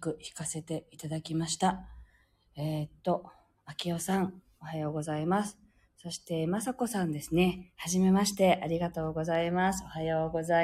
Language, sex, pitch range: Japanese, female, 150-200 Hz